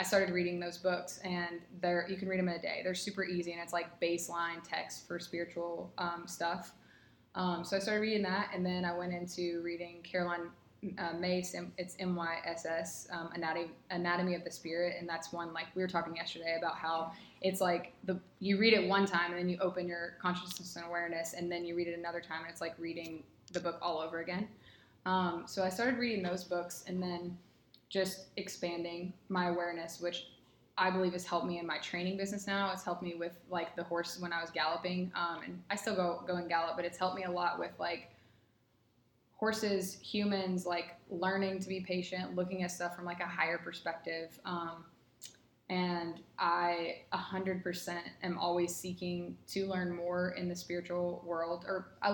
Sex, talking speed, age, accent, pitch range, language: female, 205 wpm, 20-39, American, 170-185 Hz, English